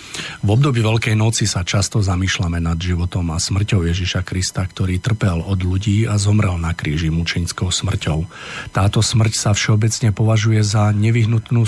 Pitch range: 90-110 Hz